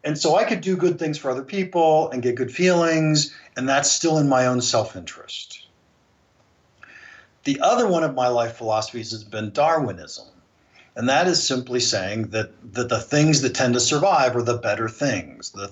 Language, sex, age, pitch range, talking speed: English, male, 50-69, 115-155 Hz, 185 wpm